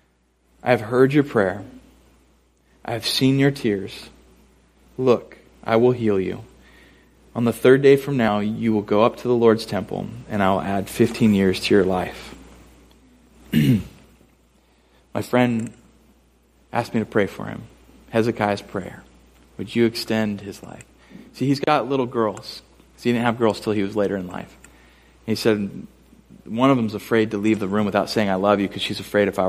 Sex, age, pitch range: male, 30-49, 95-115 Hz